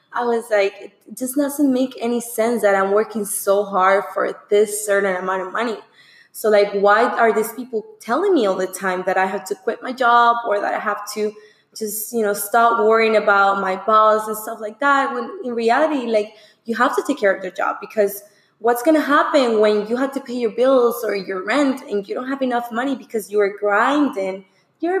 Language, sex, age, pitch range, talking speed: English, female, 20-39, 205-240 Hz, 225 wpm